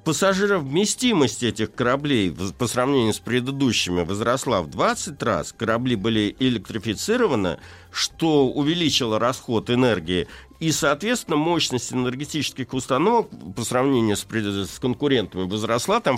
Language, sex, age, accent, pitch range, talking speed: Russian, male, 60-79, native, 110-150 Hz, 110 wpm